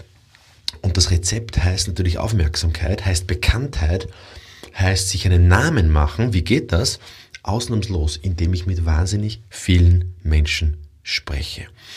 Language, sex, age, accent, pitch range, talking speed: German, male, 30-49, German, 85-110 Hz, 120 wpm